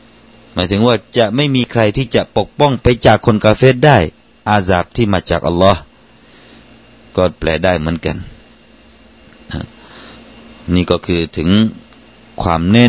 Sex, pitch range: male, 85-110 Hz